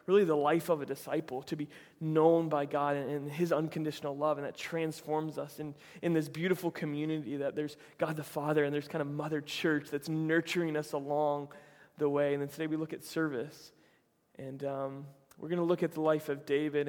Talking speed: 215 wpm